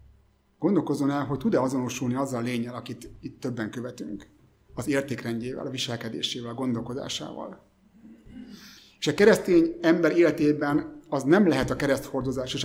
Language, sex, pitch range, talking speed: Hungarian, male, 125-145 Hz, 130 wpm